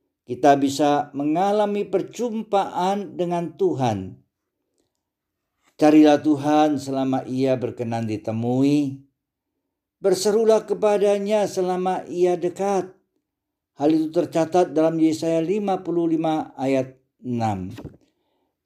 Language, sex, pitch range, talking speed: Indonesian, male, 115-160 Hz, 80 wpm